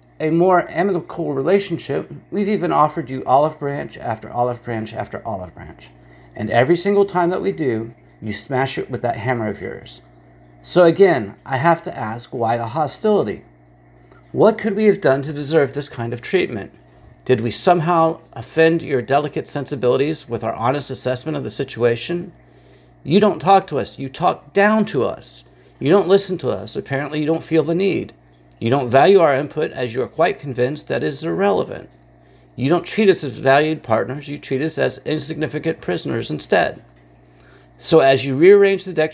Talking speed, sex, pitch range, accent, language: 185 wpm, male, 115-160 Hz, American, English